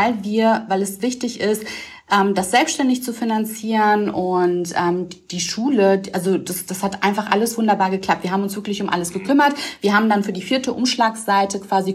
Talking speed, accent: 180 wpm, German